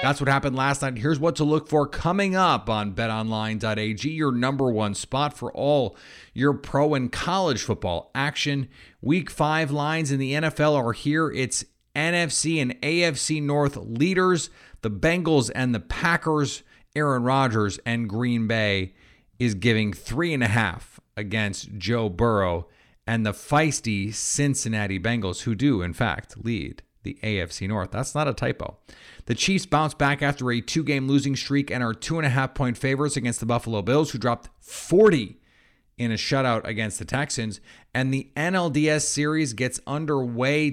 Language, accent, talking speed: English, American, 160 wpm